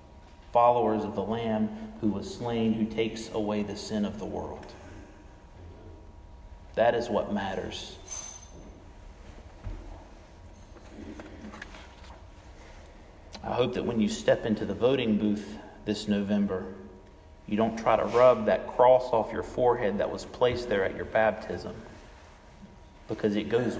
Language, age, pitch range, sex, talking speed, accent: English, 40-59, 85-115 Hz, male, 130 wpm, American